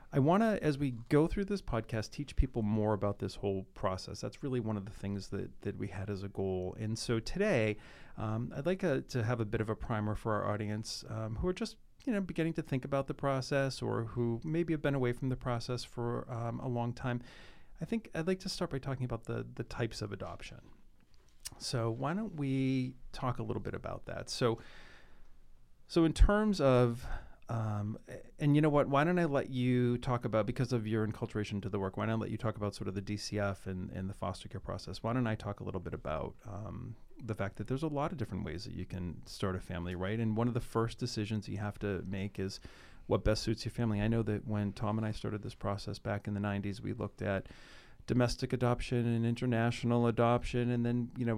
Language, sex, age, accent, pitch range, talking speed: English, male, 40-59, American, 100-125 Hz, 240 wpm